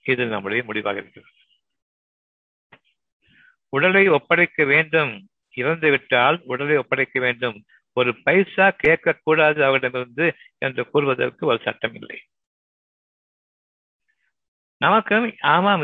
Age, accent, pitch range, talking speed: 60-79, native, 115-165 Hz, 90 wpm